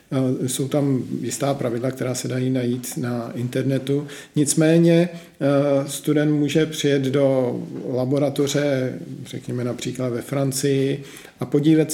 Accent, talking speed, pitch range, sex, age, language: native, 105 wpm, 130-150 Hz, male, 50-69, Czech